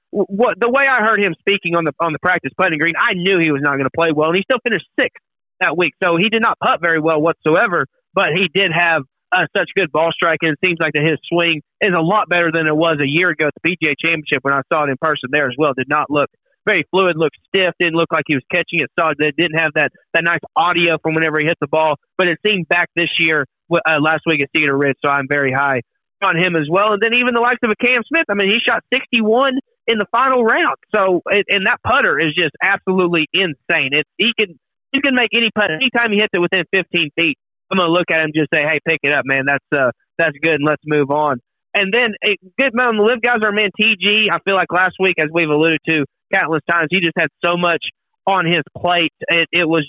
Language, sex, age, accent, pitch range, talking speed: English, male, 30-49, American, 155-205 Hz, 265 wpm